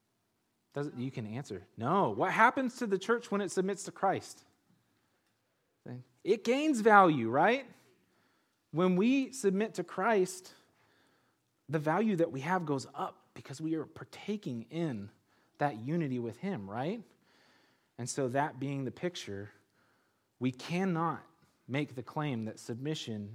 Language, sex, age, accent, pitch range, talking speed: English, male, 30-49, American, 110-170 Hz, 135 wpm